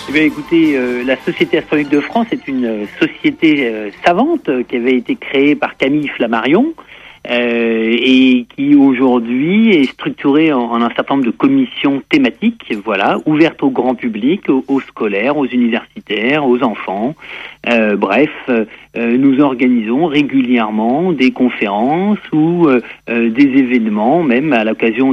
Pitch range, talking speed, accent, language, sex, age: 115-150 Hz, 145 wpm, French, French, male, 50-69